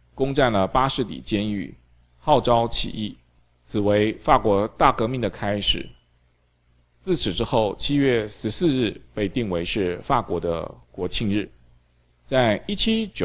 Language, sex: Chinese, male